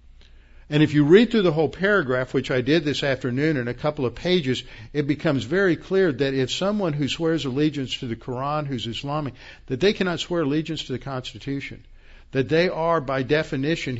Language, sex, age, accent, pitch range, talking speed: English, male, 60-79, American, 120-155 Hz, 195 wpm